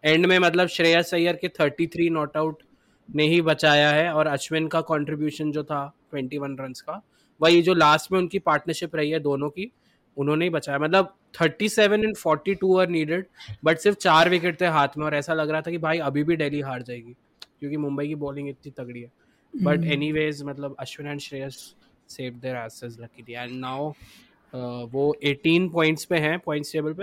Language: Hindi